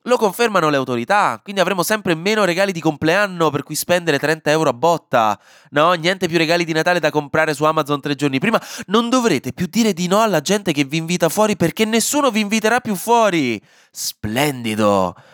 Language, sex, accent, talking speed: Italian, male, native, 195 wpm